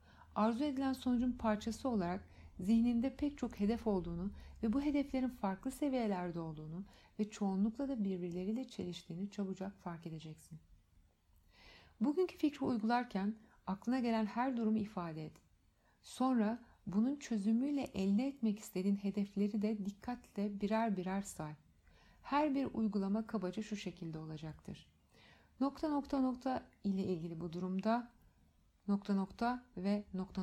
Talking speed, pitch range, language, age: 125 wpm, 180-235 Hz, Turkish, 60-79